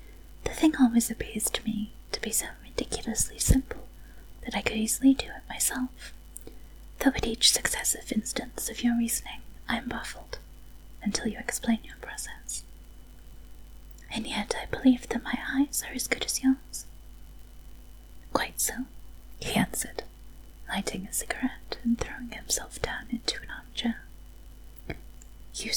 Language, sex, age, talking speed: English, female, 20-39, 140 wpm